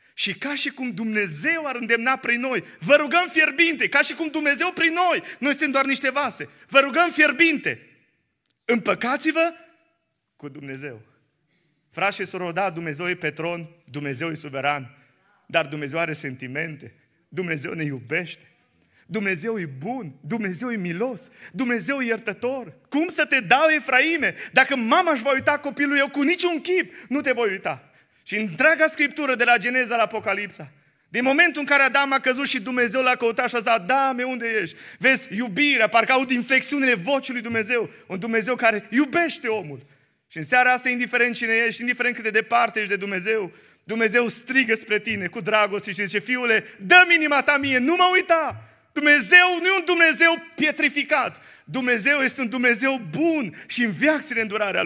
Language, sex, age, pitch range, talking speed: Romanian, male, 30-49, 195-285 Hz, 170 wpm